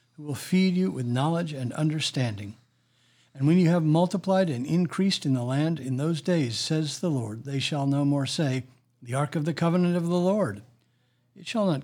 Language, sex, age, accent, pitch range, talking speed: English, male, 60-79, American, 125-150 Hz, 200 wpm